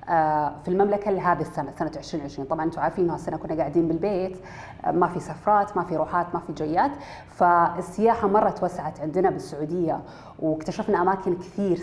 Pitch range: 155-185 Hz